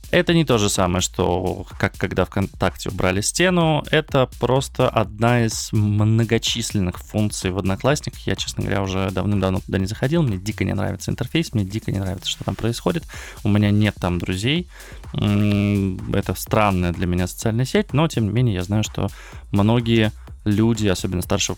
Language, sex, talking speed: Russian, male, 170 wpm